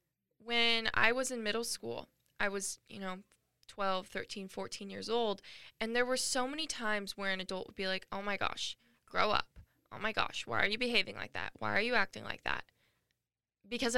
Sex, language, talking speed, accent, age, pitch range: female, English, 205 wpm, American, 10-29, 195-235 Hz